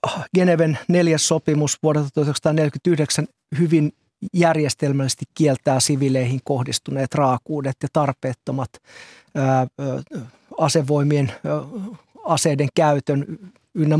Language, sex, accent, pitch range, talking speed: Finnish, male, native, 140-175 Hz, 75 wpm